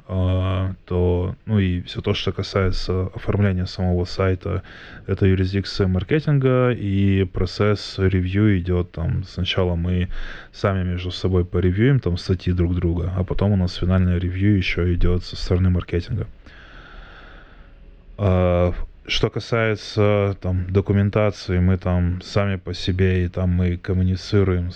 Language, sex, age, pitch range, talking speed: Russian, male, 20-39, 90-100 Hz, 125 wpm